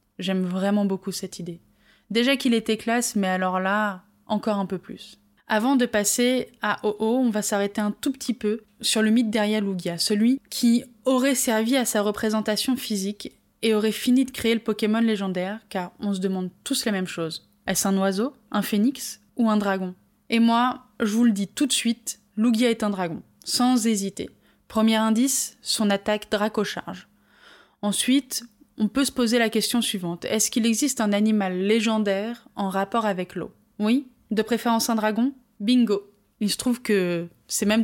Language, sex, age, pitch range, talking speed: French, female, 20-39, 200-235 Hz, 185 wpm